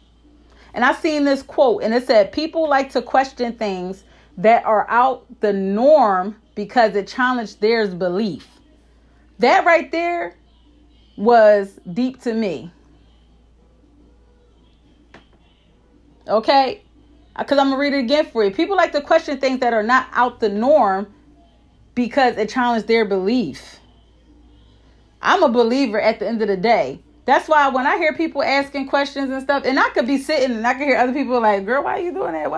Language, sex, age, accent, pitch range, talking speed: English, female, 30-49, American, 220-290 Hz, 175 wpm